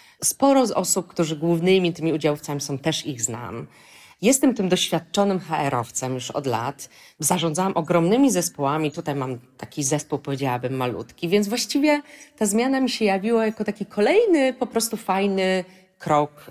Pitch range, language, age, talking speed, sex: 150-190 Hz, Polish, 30-49, 150 wpm, female